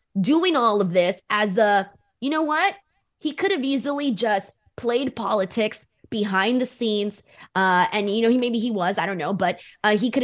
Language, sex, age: English, female, 20-39